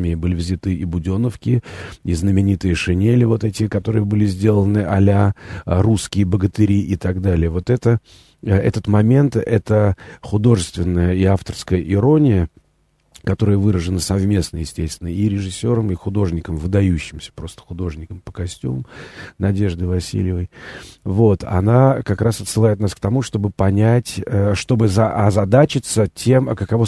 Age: 40-59